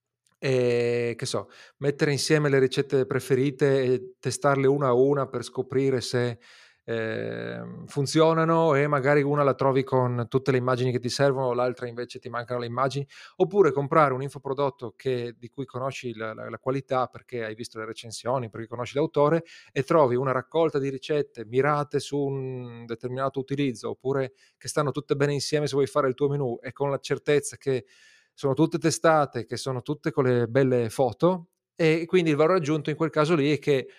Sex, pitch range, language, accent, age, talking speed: male, 120-145 Hz, Italian, native, 30-49, 185 wpm